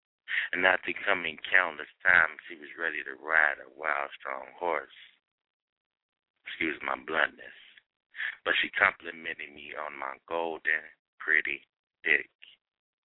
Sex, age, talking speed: male, 60-79, 120 wpm